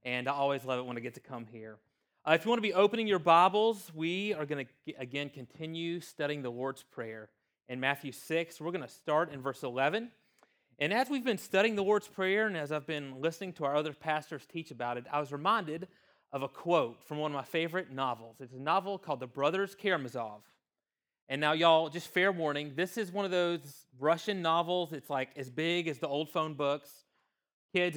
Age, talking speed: 30-49, 220 wpm